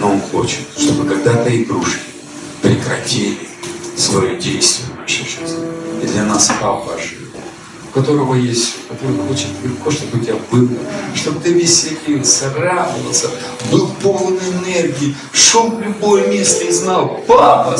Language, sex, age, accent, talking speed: Russian, male, 50-69, native, 130 wpm